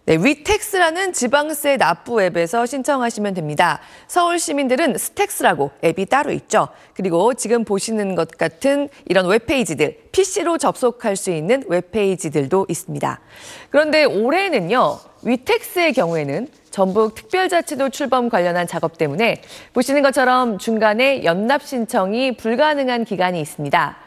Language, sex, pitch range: Korean, female, 190-290 Hz